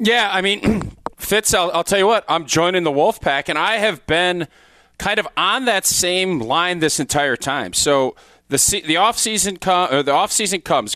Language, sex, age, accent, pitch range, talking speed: English, male, 40-59, American, 160-215 Hz, 185 wpm